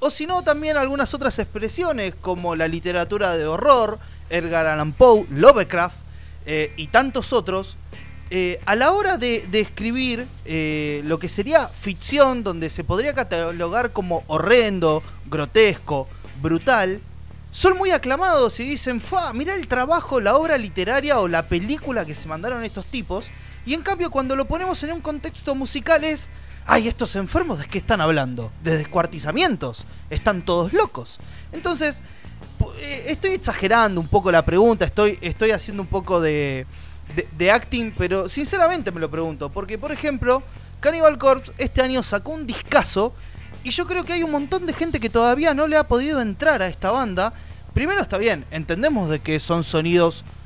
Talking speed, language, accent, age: 170 wpm, Spanish, Argentinian, 20-39